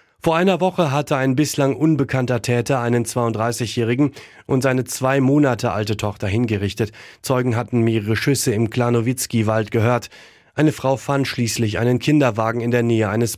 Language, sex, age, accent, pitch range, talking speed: German, male, 30-49, German, 115-130 Hz, 155 wpm